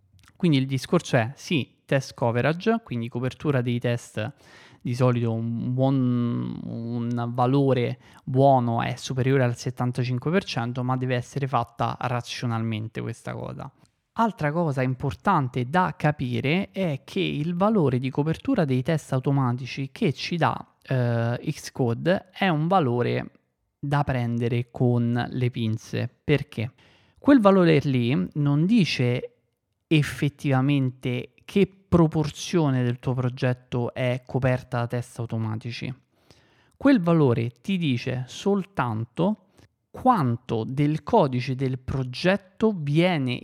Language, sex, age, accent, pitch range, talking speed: Italian, male, 20-39, native, 120-155 Hz, 115 wpm